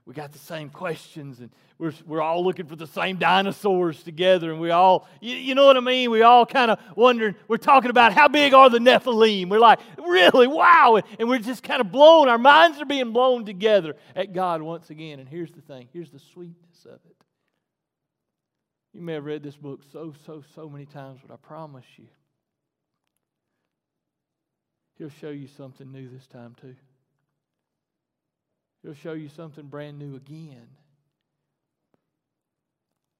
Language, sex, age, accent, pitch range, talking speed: English, male, 40-59, American, 140-195 Hz, 175 wpm